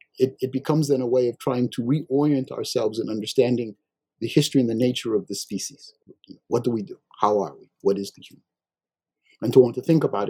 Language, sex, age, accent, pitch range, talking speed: English, male, 50-69, American, 120-170 Hz, 215 wpm